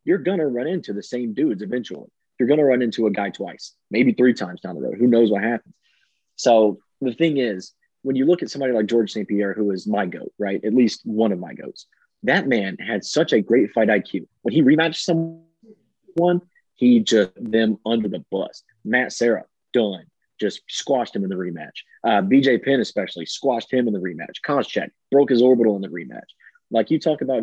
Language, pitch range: English, 110-150 Hz